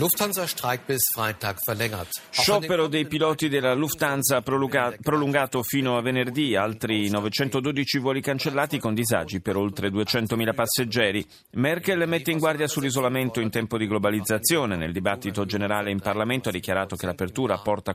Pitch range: 100-140 Hz